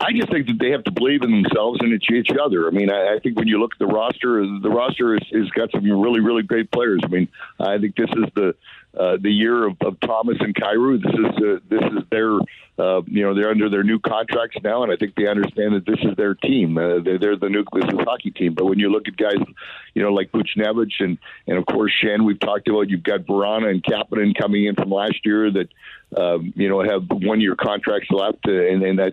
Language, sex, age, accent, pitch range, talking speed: English, male, 50-69, American, 100-120 Hz, 255 wpm